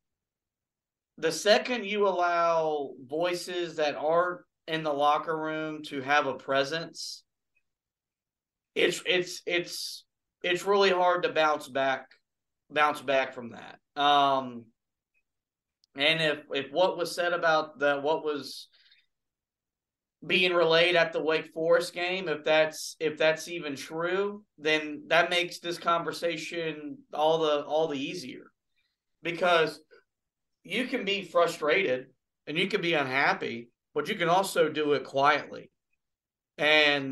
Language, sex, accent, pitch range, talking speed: English, male, American, 145-175 Hz, 130 wpm